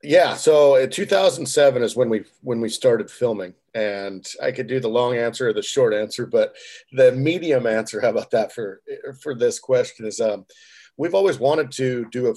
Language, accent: English, American